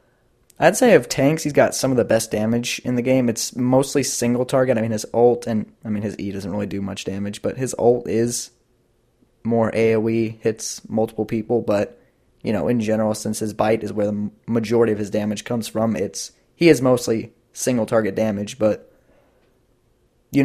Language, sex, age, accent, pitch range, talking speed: English, male, 20-39, American, 110-125 Hz, 195 wpm